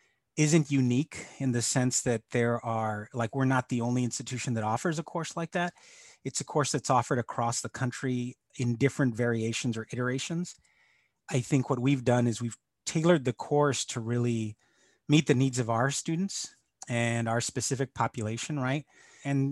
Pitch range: 120-145 Hz